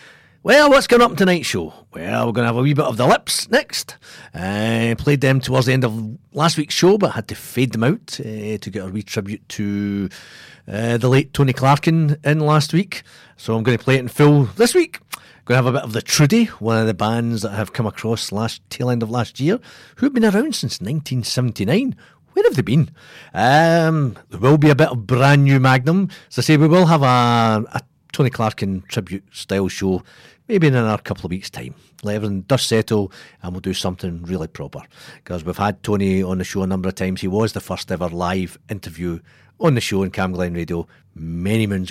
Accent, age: British, 40-59